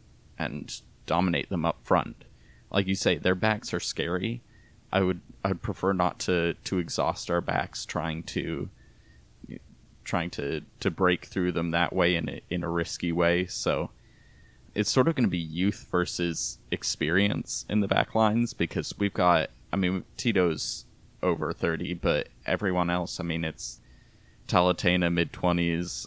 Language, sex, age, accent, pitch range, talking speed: English, male, 20-39, American, 85-95 Hz, 155 wpm